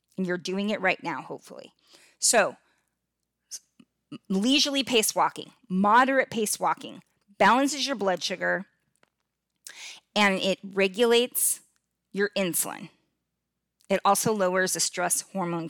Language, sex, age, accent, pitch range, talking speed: English, female, 30-49, American, 185-235 Hz, 110 wpm